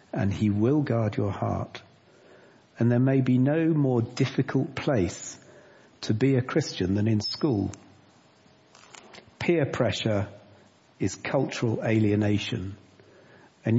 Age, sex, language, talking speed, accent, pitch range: 50-69, male, English, 120 wpm, British, 100-125 Hz